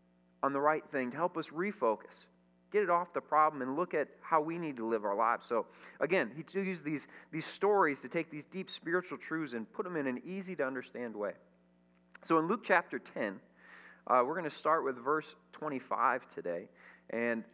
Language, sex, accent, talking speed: English, male, American, 200 wpm